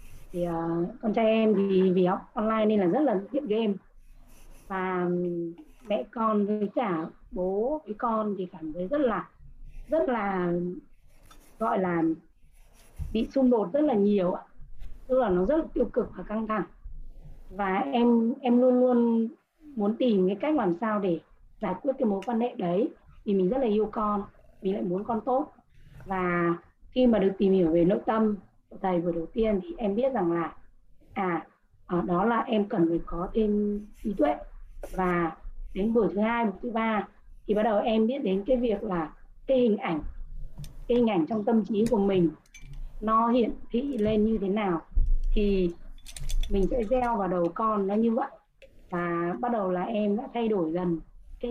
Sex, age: female, 20-39